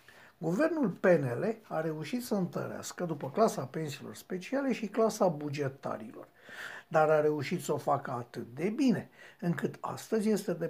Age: 60-79